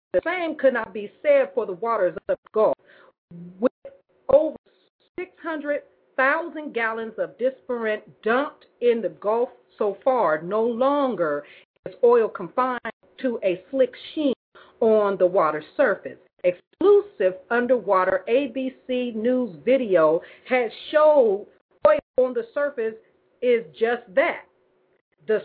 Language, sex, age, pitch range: English, female, 40-59, 190-265 Hz